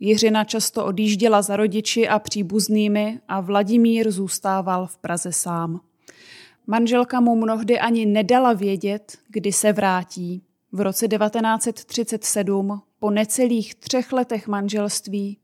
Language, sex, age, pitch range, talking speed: Czech, female, 20-39, 195-240 Hz, 115 wpm